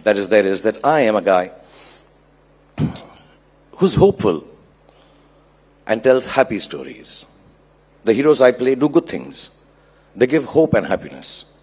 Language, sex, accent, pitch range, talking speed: English, male, Indian, 95-130 Hz, 140 wpm